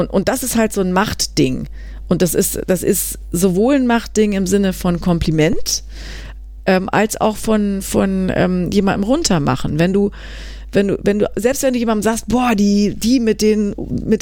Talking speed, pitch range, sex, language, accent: 190 wpm, 185-225 Hz, female, German, German